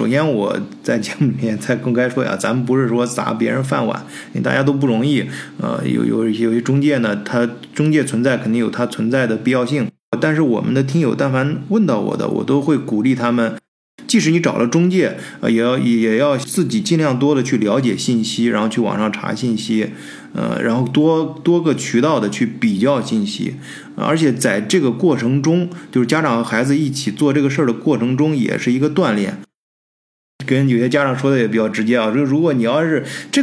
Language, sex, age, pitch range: Chinese, male, 20-39, 115-145 Hz